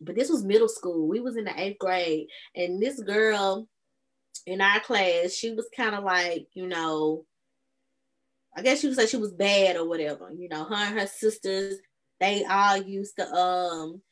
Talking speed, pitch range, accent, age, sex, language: 190 wpm, 180-270 Hz, American, 20-39, female, English